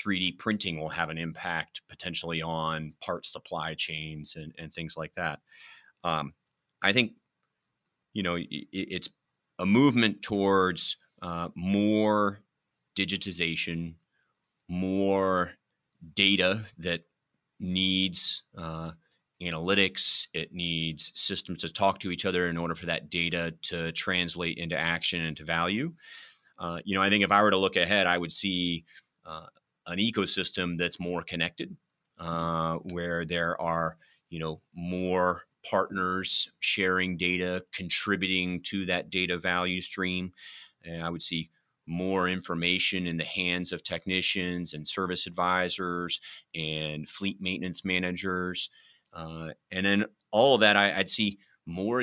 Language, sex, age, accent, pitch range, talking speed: English, male, 30-49, American, 85-95 Hz, 135 wpm